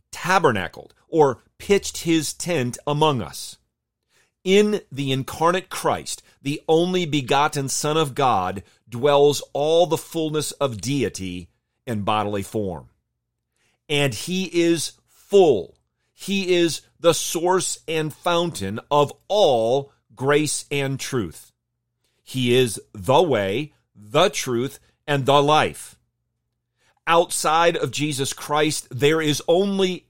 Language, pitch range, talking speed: English, 115-155 Hz, 115 wpm